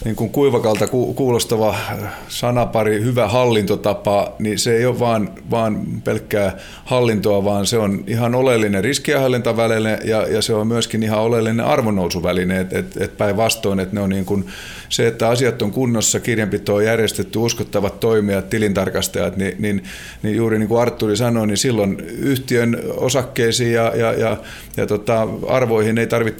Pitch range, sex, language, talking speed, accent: 100-115 Hz, male, Finnish, 155 wpm, native